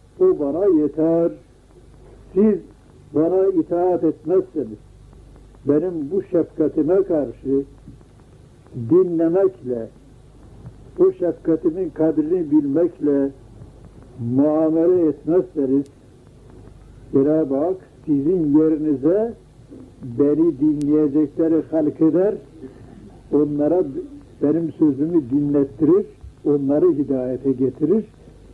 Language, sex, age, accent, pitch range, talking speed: Turkish, male, 60-79, native, 130-195 Hz, 70 wpm